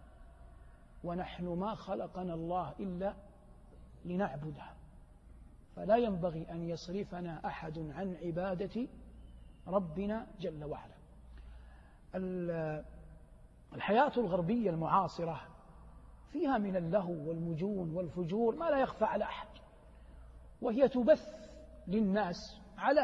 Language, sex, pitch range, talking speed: Arabic, male, 155-210 Hz, 85 wpm